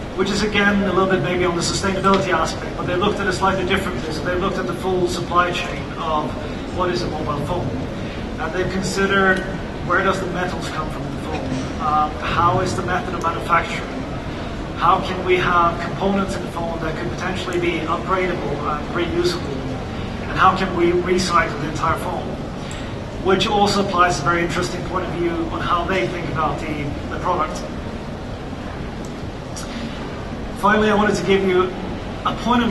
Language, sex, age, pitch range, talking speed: English, male, 30-49, 170-190 Hz, 180 wpm